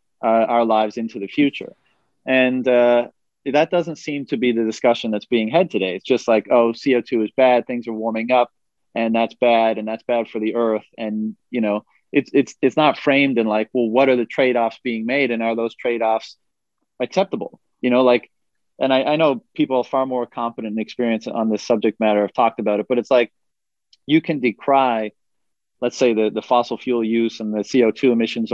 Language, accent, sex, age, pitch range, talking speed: English, American, male, 30-49, 110-125 Hz, 210 wpm